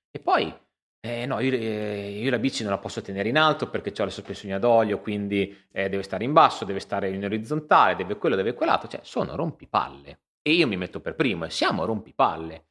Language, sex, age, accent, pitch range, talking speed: Italian, male, 30-49, native, 90-125 Hz, 220 wpm